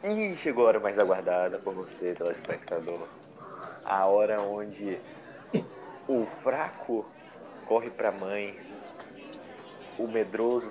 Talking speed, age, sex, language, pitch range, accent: 105 wpm, 20-39, male, Portuguese, 95-120 Hz, Brazilian